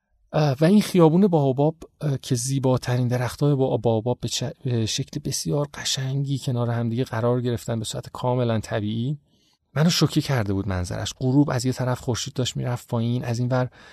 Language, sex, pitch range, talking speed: Persian, male, 120-150 Hz, 170 wpm